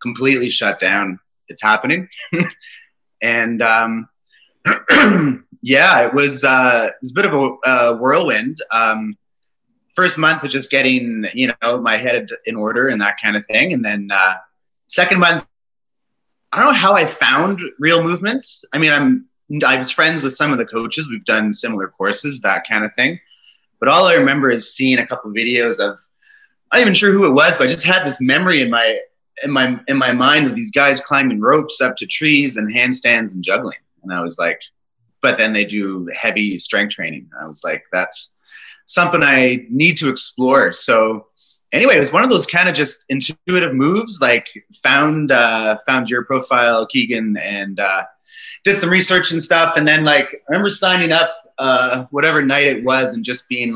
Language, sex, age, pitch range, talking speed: English, male, 30-49, 120-175 Hz, 195 wpm